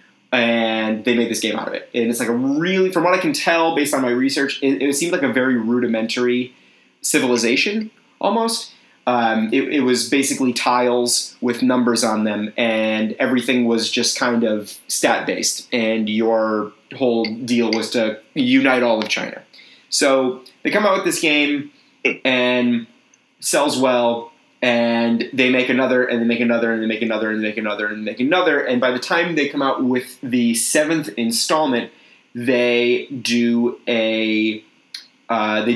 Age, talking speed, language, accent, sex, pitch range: 30-49, 175 wpm, English, American, male, 110-130 Hz